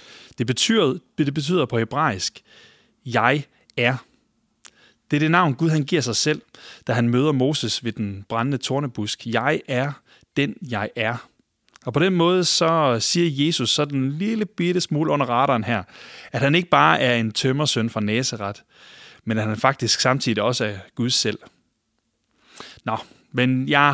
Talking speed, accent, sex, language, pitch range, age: 170 wpm, Danish, male, English, 115-155 Hz, 30-49